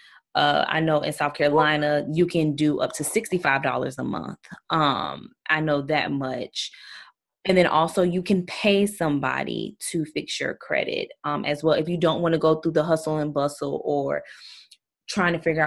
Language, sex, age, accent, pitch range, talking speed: English, female, 20-39, American, 145-170 Hz, 185 wpm